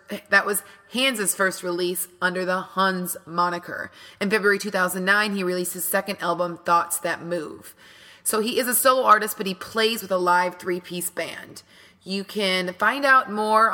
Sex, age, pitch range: female, 30-49, 175-205 Hz